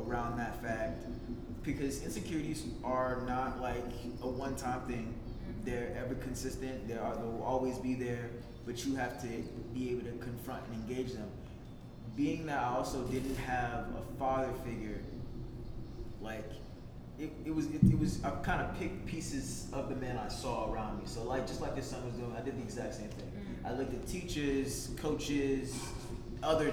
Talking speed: 180 wpm